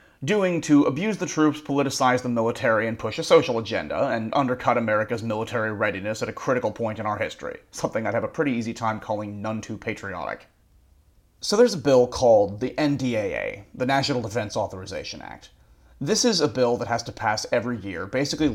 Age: 30-49